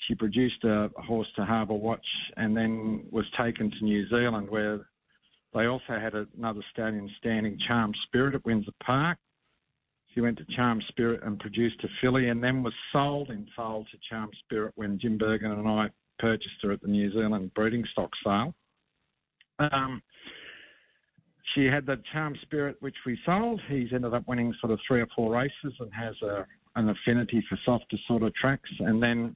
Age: 50-69